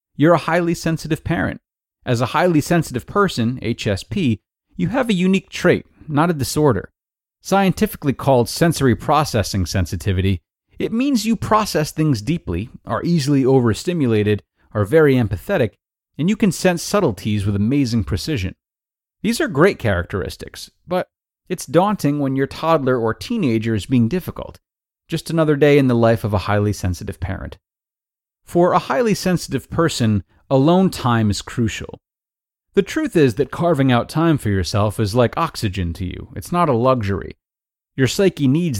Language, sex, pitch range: English, male, 105-160 Hz